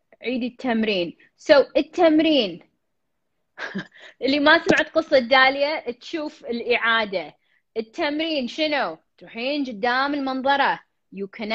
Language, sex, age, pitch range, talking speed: Arabic, female, 20-39, 230-310 Hz, 90 wpm